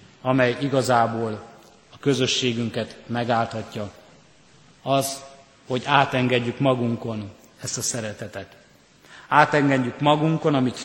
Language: Hungarian